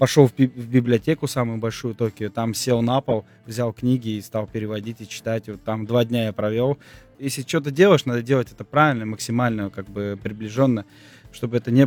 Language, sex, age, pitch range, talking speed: Russian, male, 20-39, 110-135 Hz, 185 wpm